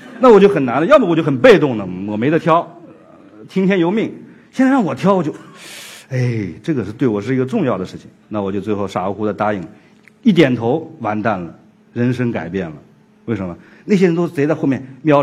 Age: 50-69